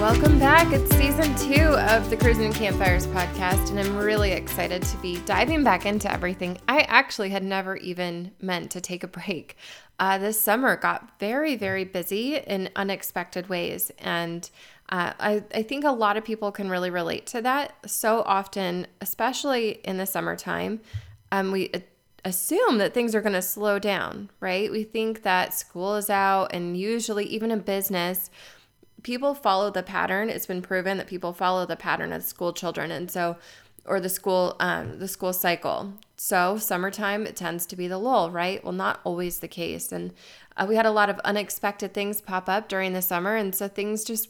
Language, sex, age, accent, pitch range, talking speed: English, female, 20-39, American, 180-215 Hz, 185 wpm